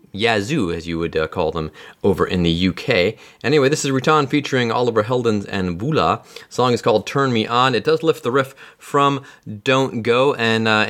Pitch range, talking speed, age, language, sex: 95-140 Hz, 205 wpm, 30-49, English, male